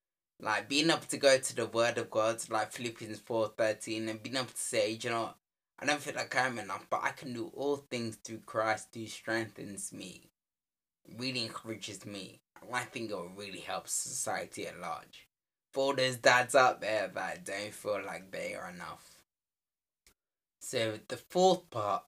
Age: 10-29